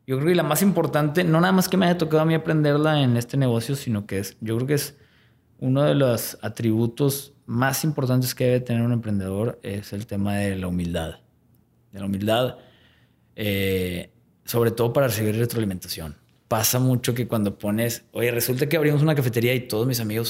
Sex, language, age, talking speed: male, Spanish, 20-39, 200 wpm